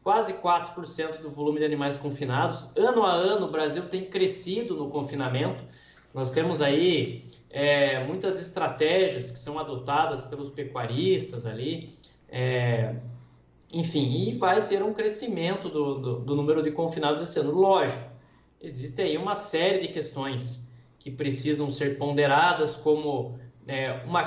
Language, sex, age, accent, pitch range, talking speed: Portuguese, male, 20-39, Brazilian, 135-170 Hz, 130 wpm